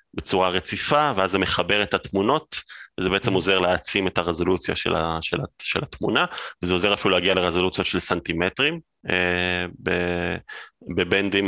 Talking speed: 120 wpm